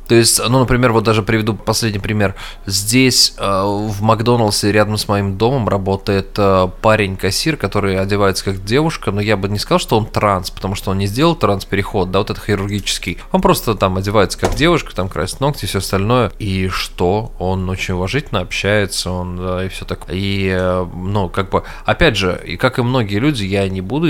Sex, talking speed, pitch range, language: male, 190 wpm, 95-130 Hz, Russian